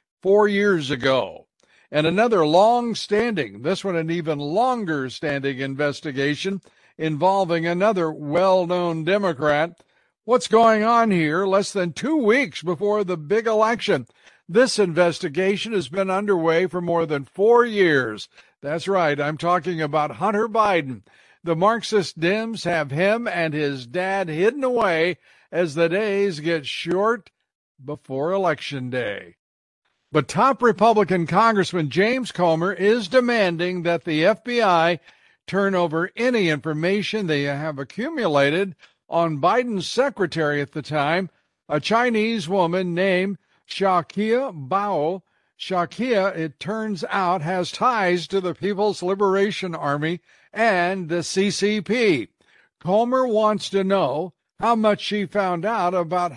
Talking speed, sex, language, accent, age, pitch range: 130 wpm, male, English, American, 60-79, 165-210 Hz